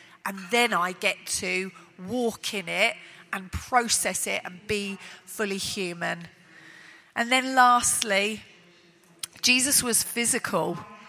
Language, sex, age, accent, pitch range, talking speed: English, female, 40-59, British, 200-270 Hz, 115 wpm